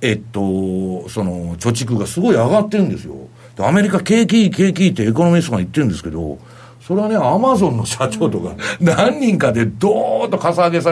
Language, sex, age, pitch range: Japanese, male, 60-79, 110-165 Hz